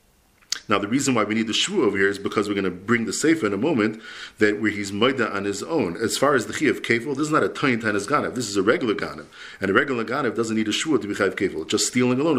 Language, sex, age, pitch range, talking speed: English, male, 40-59, 105-130 Hz, 300 wpm